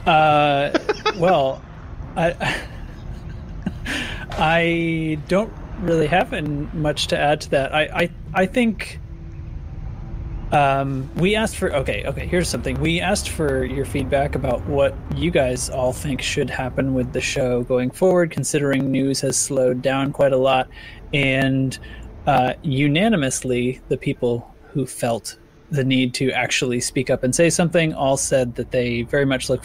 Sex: male